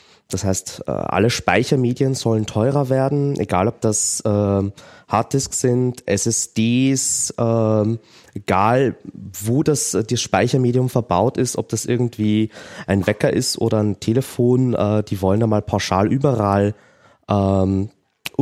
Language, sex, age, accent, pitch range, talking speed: German, male, 20-39, German, 105-130 Hz, 125 wpm